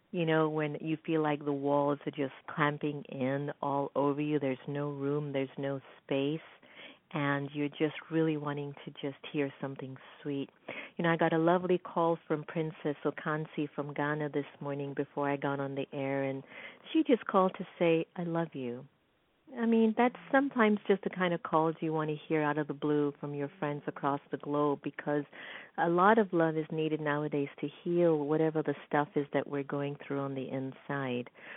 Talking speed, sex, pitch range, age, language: 200 wpm, female, 145-175 Hz, 50-69, English